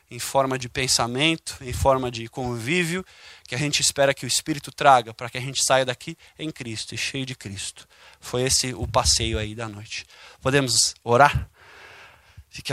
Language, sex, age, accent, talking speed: Portuguese, male, 20-39, Brazilian, 180 wpm